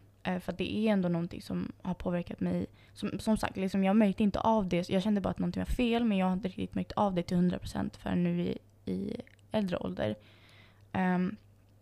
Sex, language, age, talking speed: female, Swedish, 20-39, 215 wpm